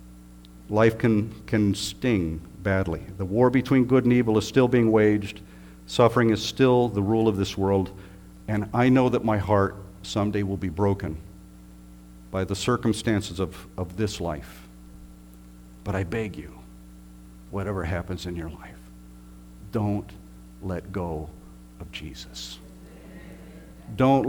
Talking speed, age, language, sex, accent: 135 wpm, 50-69, English, male, American